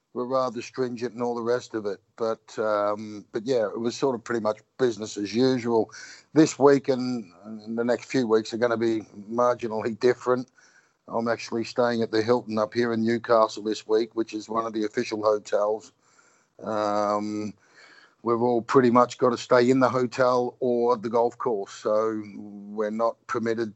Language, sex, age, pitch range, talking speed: English, male, 50-69, 110-125 Hz, 185 wpm